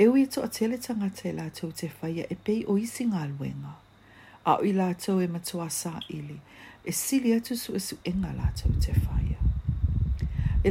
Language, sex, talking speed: English, female, 170 wpm